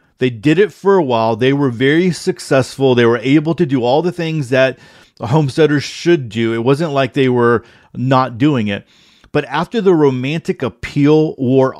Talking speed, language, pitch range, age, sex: 185 wpm, English, 125-150 Hz, 50-69, male